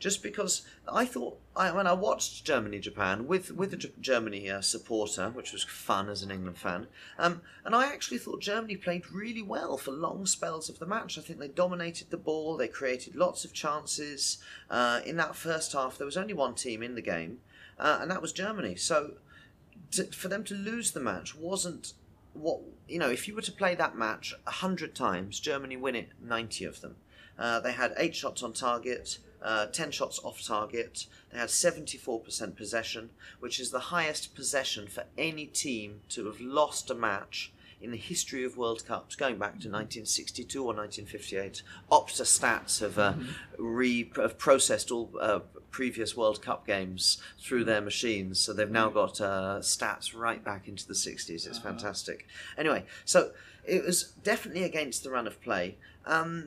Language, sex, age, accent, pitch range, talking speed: English, male, 30-49, British, 105-160 Hz, 185 wpm